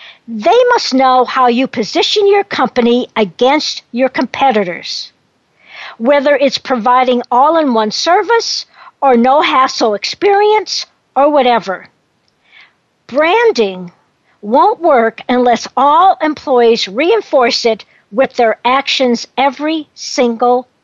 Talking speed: 100 wpm